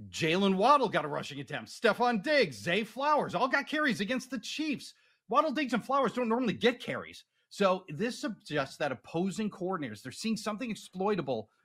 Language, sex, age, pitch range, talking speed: English, male, 40-59, 155-250 Hz, 175 wpm